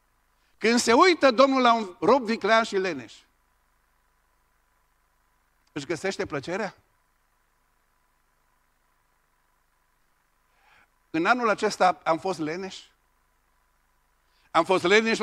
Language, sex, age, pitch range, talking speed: Romanian, male, 50-69, 195-260 Hz, 85 wpm